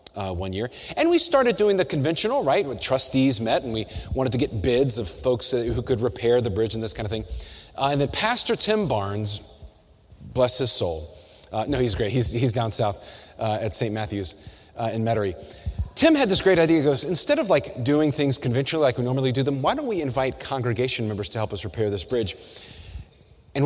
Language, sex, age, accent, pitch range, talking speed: English, male, 30-49, American, 110-145 Hz, 220 wpm